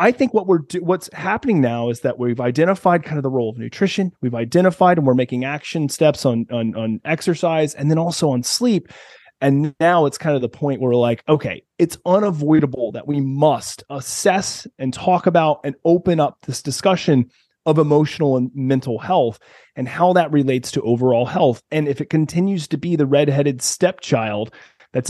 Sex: male